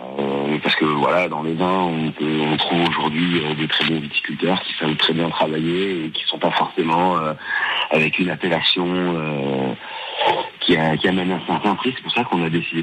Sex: male